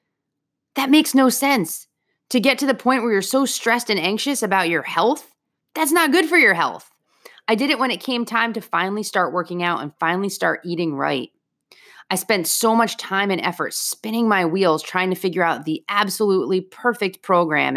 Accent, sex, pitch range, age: American, female, 170-225 Hz, 30-49